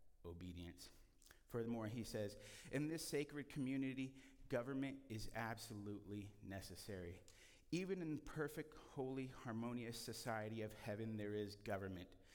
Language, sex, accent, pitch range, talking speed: English, male, American, 100-125 Hz, 110 wpm